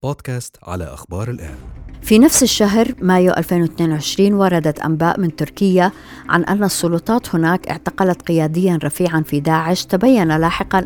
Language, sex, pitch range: Arabic, female, 160-190 Hz